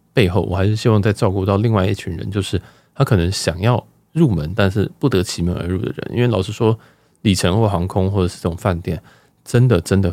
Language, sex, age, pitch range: Chinese, male, 20-39, 90-115 Hz